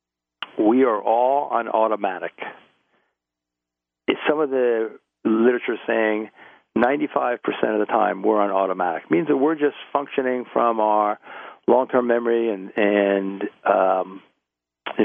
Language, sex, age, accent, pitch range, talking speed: English, male, 50-69, American, 95-125 Hz, 130 wpm